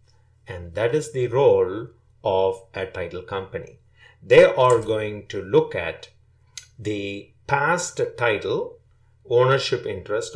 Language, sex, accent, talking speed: English, male, Indian, 115 wpm